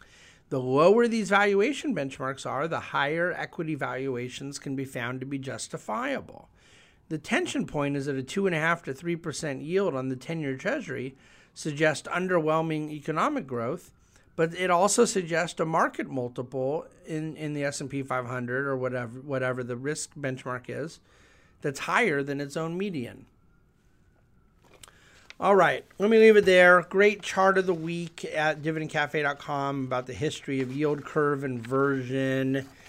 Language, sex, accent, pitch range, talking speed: English, male, American, 135-165 Hz, 145 wpm